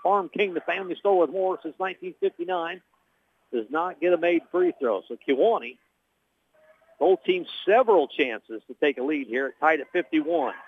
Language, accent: English, American